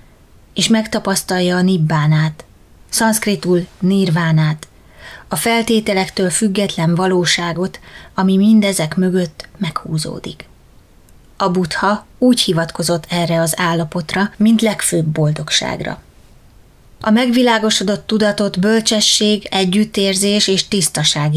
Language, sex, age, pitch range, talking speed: Hungarian, female, 20-39, 170-210 Hz, 85 wpm